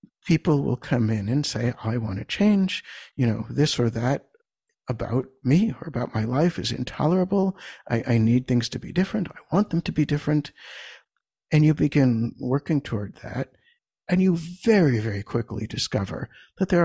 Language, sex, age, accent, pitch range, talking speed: English, male, 60-79, American, 120-160 Hz, 180 wpm